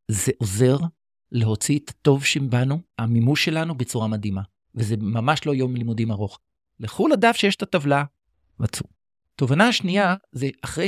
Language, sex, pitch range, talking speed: Hebrew, male, 125-180 Hz, 145 wpm